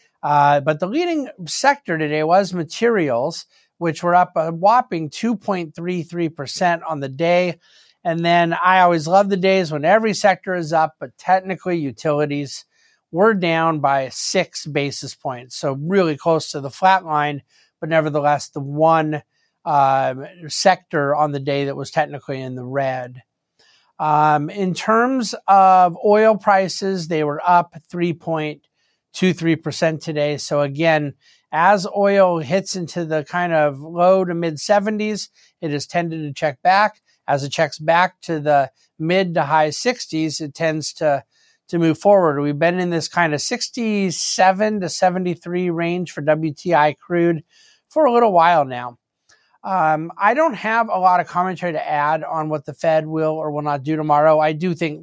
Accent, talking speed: American, 165 wpm